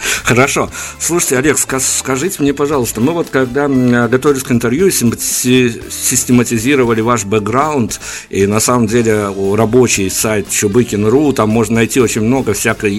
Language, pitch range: Russian, 110-130 Hz